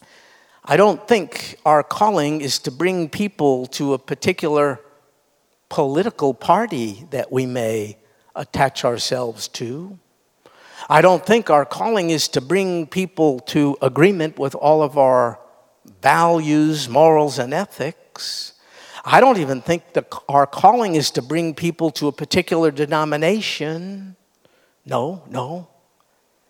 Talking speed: 125 wpm